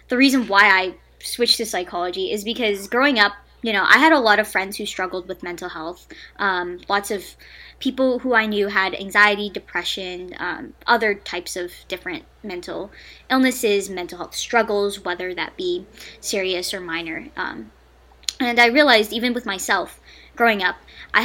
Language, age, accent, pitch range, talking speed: English, 10-29, American, 180-225 Hz, 170 wpm